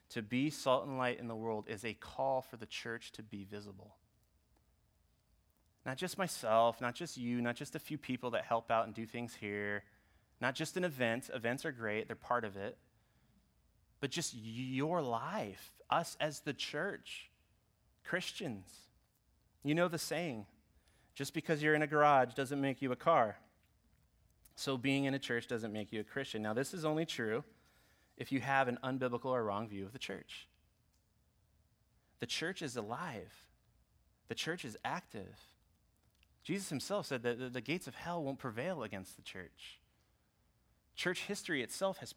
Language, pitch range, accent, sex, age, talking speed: English, 105-140 Hz, American, male, 30-49, 170 wpm